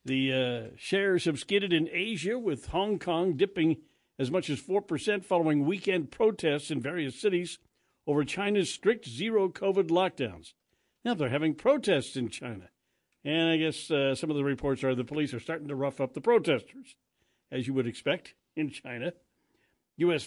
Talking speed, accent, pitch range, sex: 170 wpm, American, 135-165 Hz, male